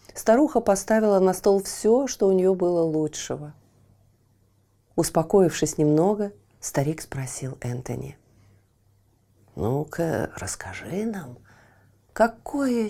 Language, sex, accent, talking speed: Russian, female, native, 90 wpm